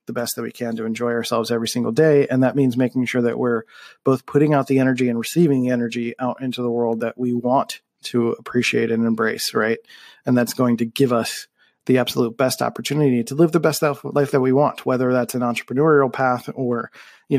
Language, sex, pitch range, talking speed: English, male, 120-135 Hz, 215 wpm